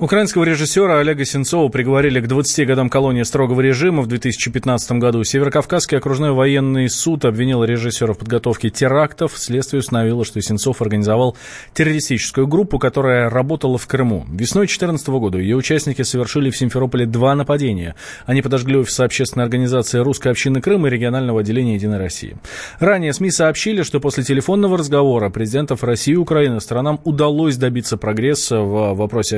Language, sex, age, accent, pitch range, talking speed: Russian, male, 20-39, native, 120-150 Hz, 150 wpm